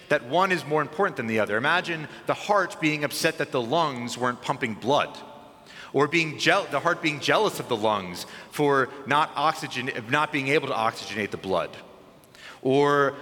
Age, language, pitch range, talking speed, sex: 30-49, English, 130-175 Hz, 180 wpm, male